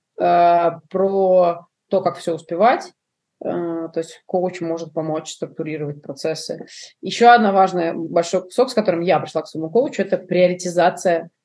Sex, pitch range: female, 175-210 Hz